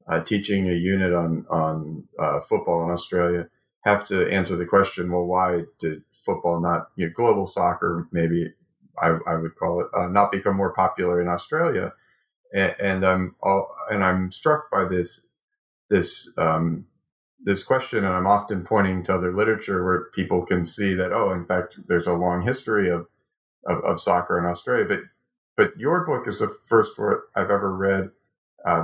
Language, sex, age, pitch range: English, male, 40-59, 90-110 Hz